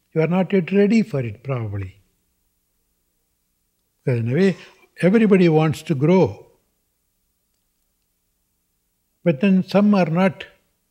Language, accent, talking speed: English, Indian, 115 wpm